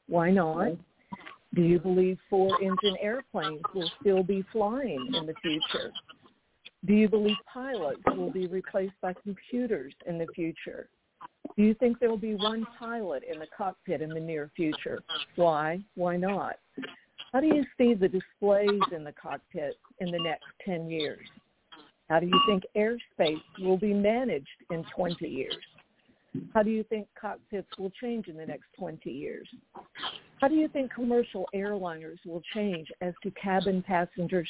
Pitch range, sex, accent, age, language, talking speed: 175-220 Hz, female, American, 50-69, English, 160 wpm